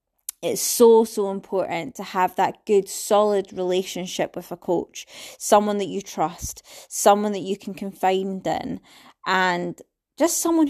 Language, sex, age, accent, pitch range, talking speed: English, female, 20-39, British, 185-215 Hz, 145 wpm